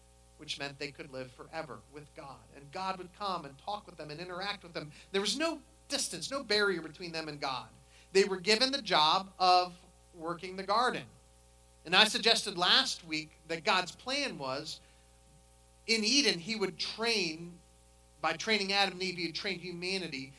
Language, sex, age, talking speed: English, male, 40-59, 180 wpm